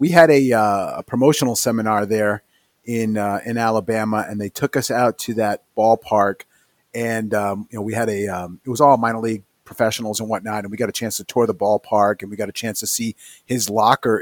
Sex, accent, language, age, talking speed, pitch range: male, American, English, 40-59, 230 wpm, 105-125 Hz